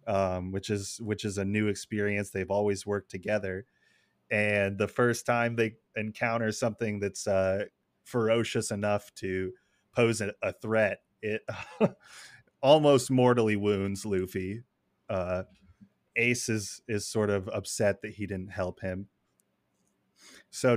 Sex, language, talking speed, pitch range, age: male, English, 125 wpm, 100-115 Hz, 30-49